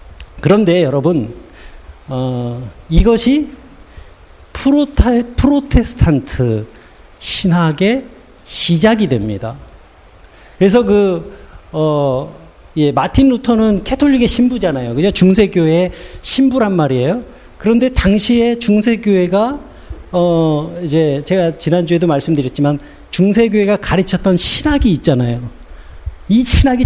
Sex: male